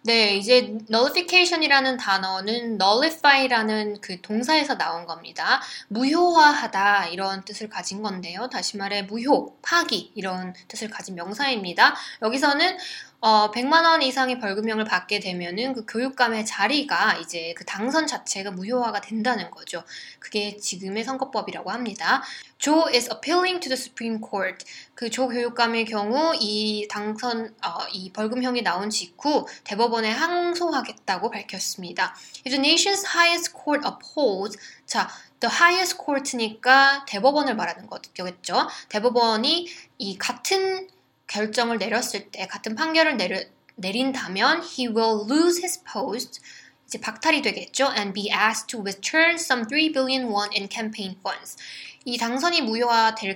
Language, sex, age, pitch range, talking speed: English, female, 20-39, 205-275 Hz, 125 wpm